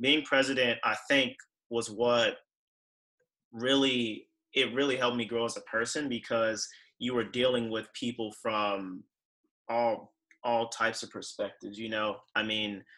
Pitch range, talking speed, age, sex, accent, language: 105-120 Hz, 145 wpm, 30-49, male, American, English